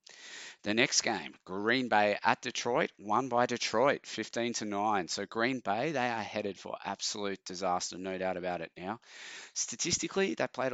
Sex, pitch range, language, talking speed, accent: male, 95-110 Hz, English, 155 wpm, Australian